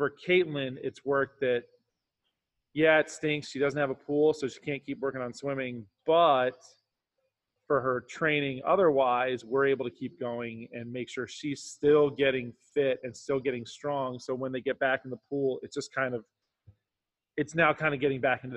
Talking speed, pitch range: 195 wpm, 120-140 Hz